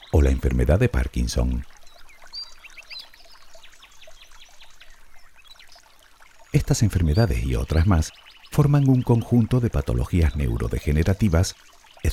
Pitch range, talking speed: 65-100 Hz, 85 wpm